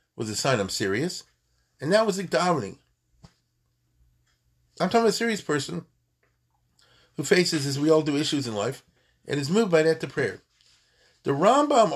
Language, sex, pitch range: English, male, 100-165 Hz